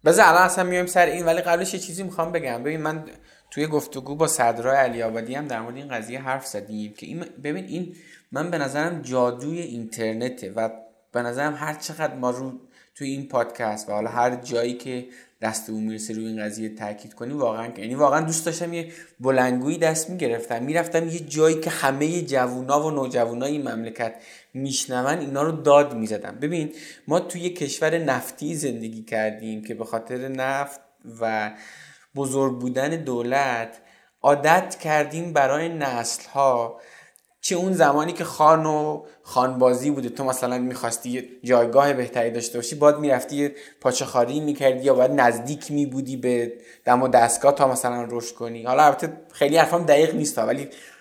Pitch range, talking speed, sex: 120-150 Hz, 165 wpm, male